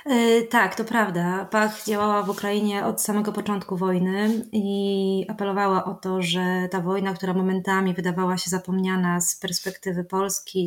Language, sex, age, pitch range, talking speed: Polish, female, 20-39, 180-200 Hz, 145 wpm